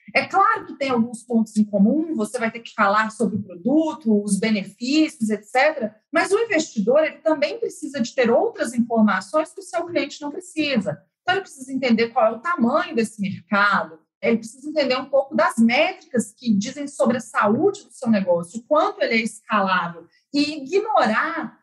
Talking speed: 185 wpm